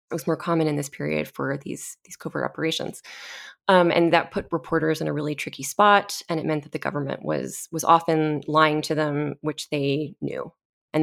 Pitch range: 155-180 Hz